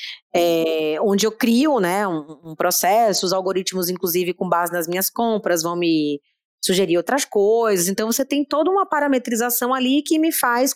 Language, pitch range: Portuguese, 180-250 Hz